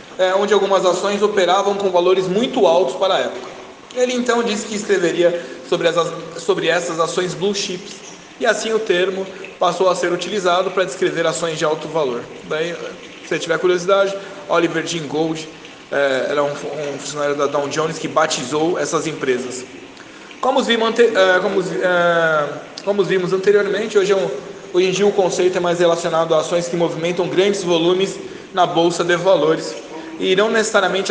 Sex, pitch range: male, 165-200 Hz